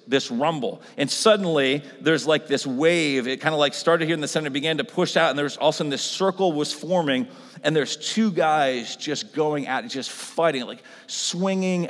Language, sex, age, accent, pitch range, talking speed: English, male, 40-59, American, 145-200 Hz, 220 wpm